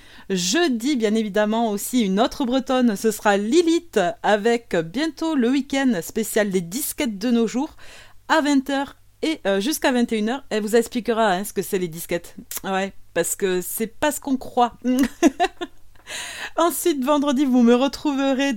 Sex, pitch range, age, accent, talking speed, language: female, 195-275 Hz, 30-49, French, 150 wpm, French